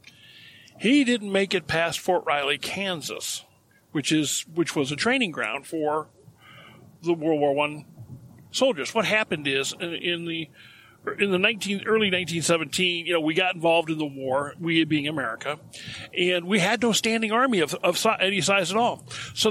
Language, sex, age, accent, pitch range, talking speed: English, male, 50-69, American, 155-220 Hz, 170 wpm